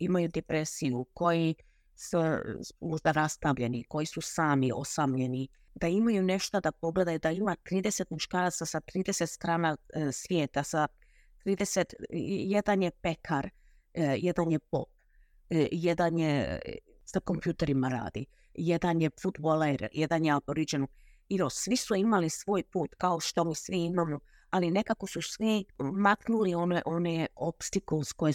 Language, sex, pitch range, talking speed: Croatian, female, 150-185 Hz, 130 wpm